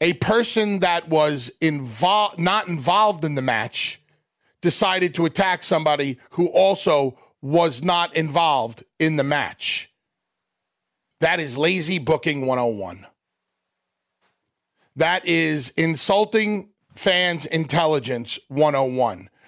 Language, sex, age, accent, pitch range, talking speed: English, male, 40-59, American, 155-210 Hz, 100 wpm